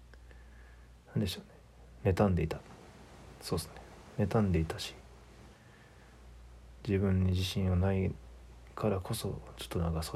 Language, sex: Japanese, male